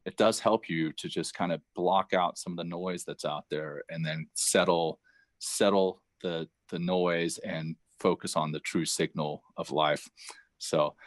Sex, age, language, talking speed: male, 30-49, English, 180 wpm